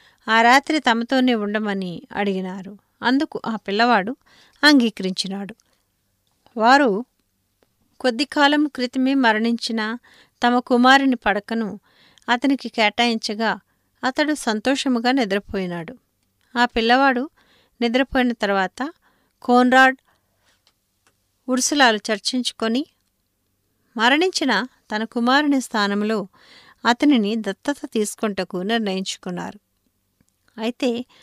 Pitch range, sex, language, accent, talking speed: 205-255 Hz, female, English, Indian, 65 wpm